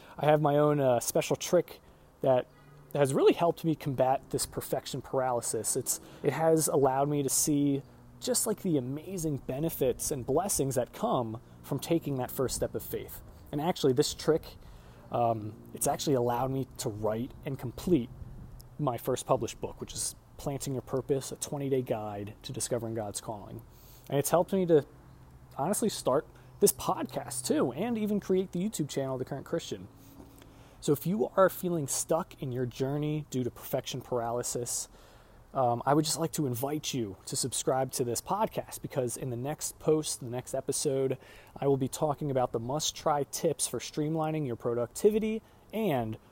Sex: male